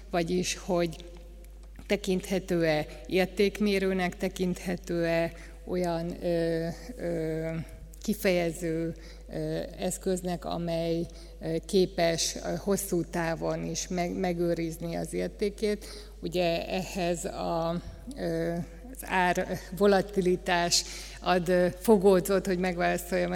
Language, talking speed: Hungarian, 60 wpm